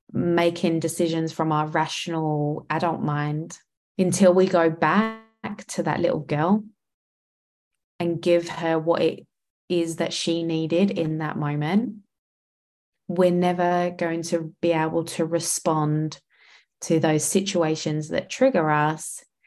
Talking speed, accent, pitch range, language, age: 125 wpm, British, 155-180 Hz, English, 20-39